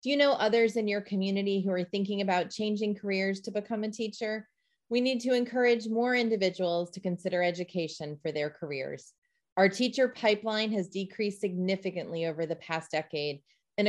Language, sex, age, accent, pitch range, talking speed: English, female, 30-49, American, 175-220 Hz, 175 wpm